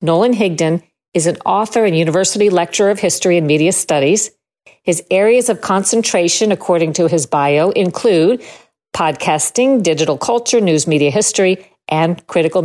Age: 50-69